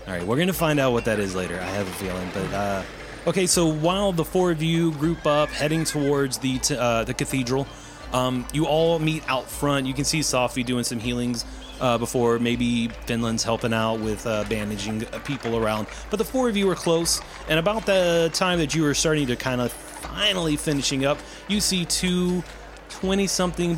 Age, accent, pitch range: 30-49, American, 125-180 Hz